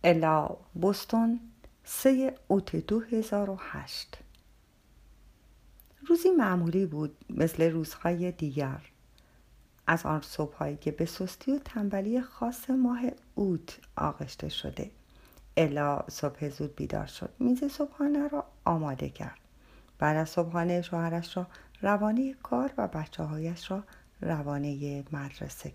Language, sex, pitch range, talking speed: Persian, female, 160-220 Hz, 120 wpm